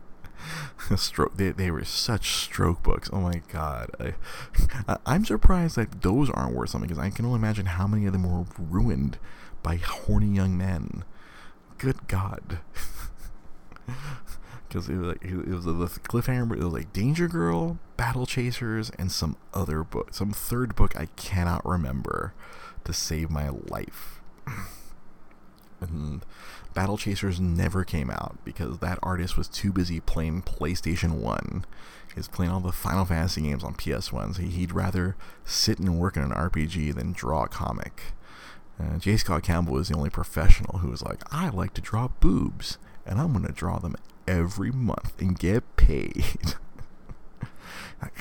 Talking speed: 160 wpm